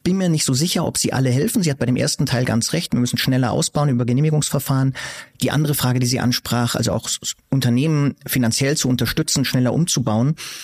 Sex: male